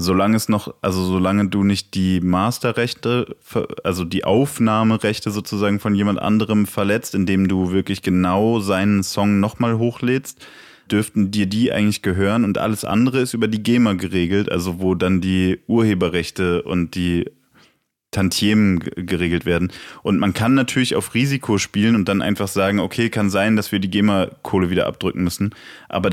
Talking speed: 160 wpm